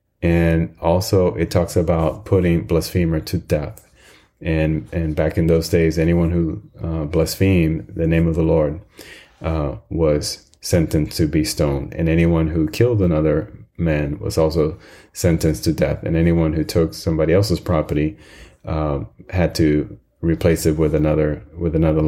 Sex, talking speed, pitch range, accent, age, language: male, 150 wpm, 80-85 Hz, American, 30-49, English